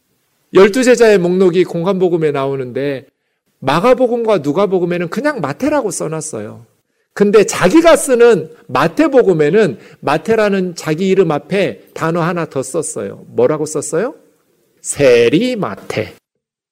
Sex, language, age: male, Korean, 40-59